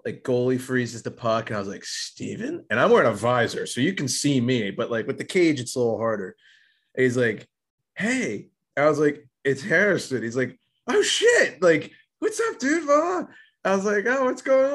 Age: 20-39